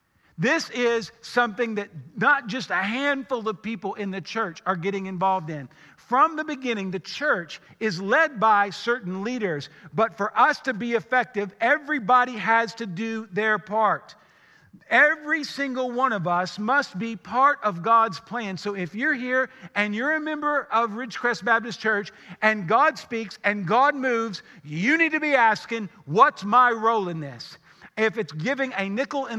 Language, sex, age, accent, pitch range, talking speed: English, male, 50-69, American, 195-250 Hz, 170 wpm